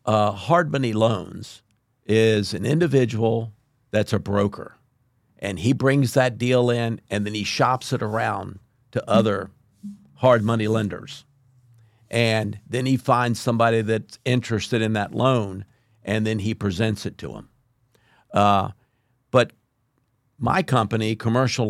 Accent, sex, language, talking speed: American, male, English, 135 wpm